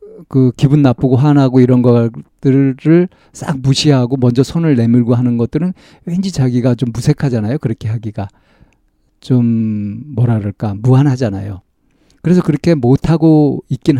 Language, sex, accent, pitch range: Korean, male, native, 120-155 Hz